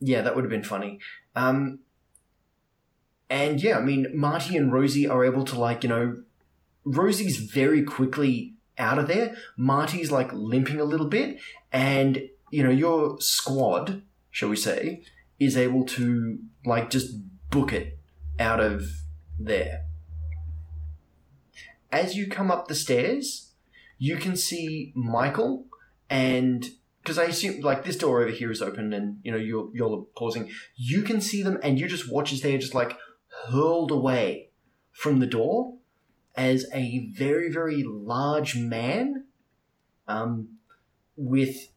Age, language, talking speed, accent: 20-39, English, 150 wpm, Australian